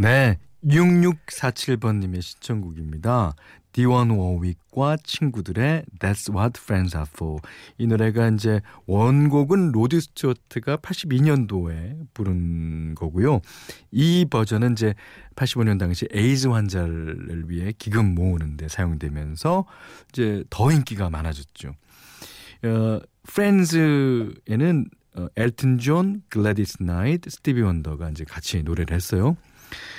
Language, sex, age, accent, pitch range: Korean, male, 40-59, native, 95-145 Hz